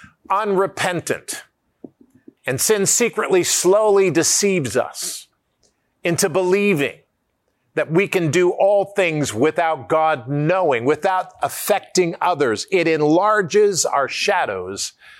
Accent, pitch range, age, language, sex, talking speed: American, 145-185 Hz, 50-69, English, male, 100 wpm